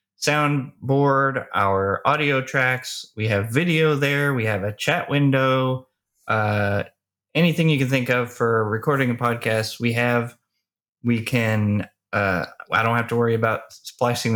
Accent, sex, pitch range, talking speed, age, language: American, male, 110-135 Hz, 145 wpm, 20-39, English